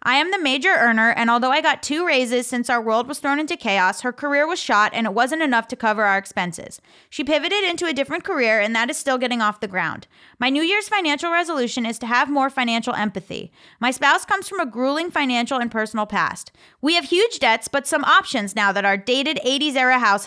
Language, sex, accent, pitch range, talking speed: English, female, American, 220-300 Hz, 235 wpm